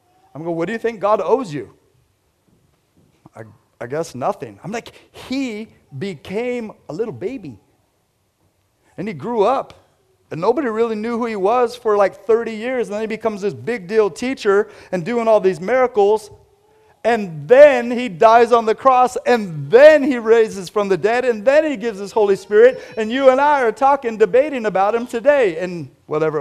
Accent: American